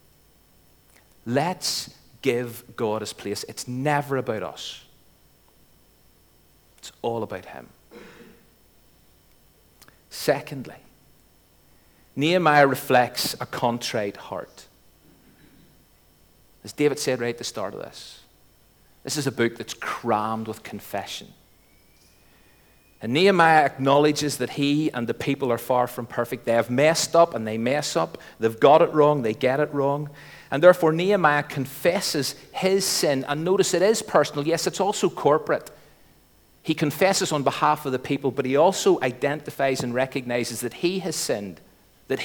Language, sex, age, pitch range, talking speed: English, male, 40-59, 105-150 Hz, 140 wpm